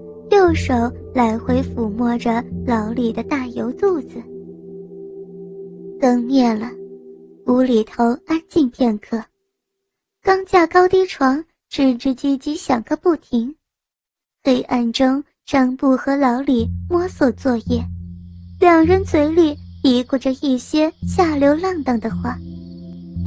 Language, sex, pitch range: Chinese, male, 230-315 Hz